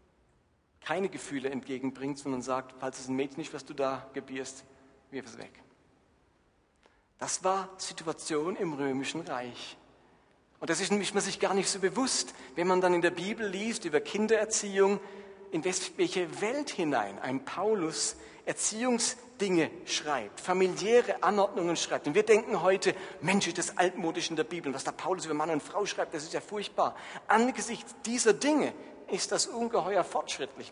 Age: 40-59